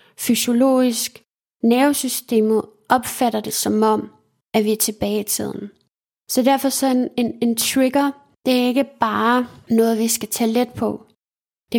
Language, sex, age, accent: Danish, female, 20-39, native